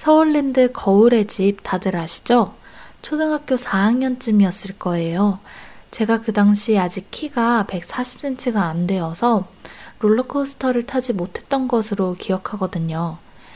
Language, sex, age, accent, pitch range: Korean, female, 20-39, native, 195-250 Hz